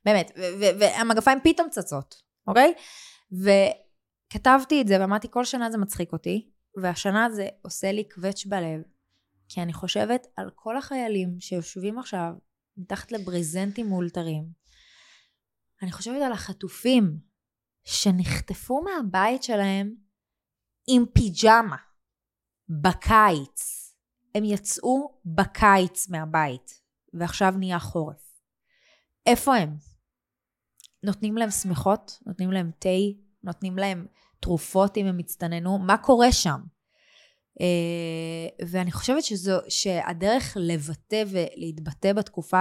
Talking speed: 105 wpm